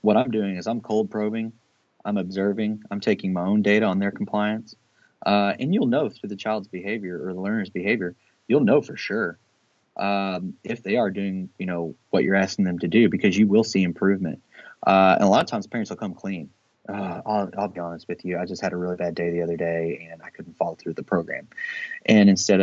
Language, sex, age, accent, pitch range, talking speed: English, male, 20-39, American, 90-110 Hz, 230 wpm